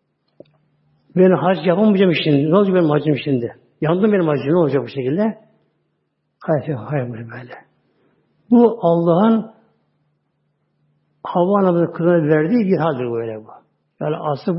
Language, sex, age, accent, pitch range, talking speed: Turkish, male, 60-79, native, 150-205 Hz, 130 wpm